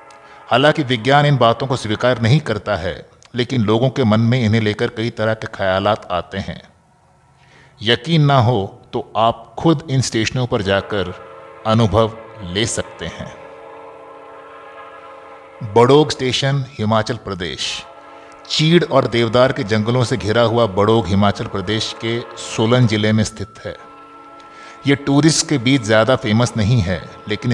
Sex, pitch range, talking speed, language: male, 105-130 Hz, 145 wpm, Hindi